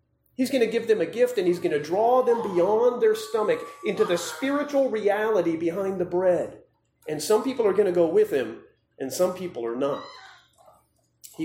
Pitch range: 180-285 Hz